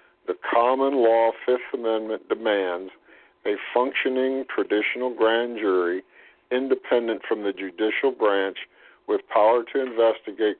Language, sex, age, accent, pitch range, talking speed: English, male, 50-69, American, 105-135 Hz, 115 wpm